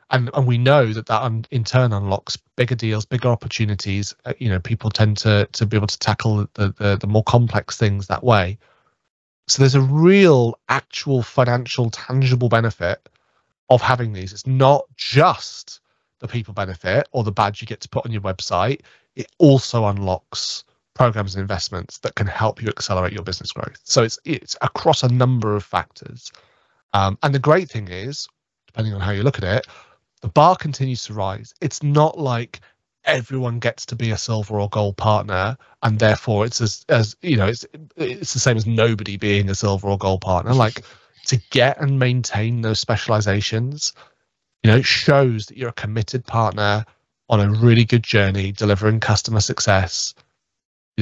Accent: British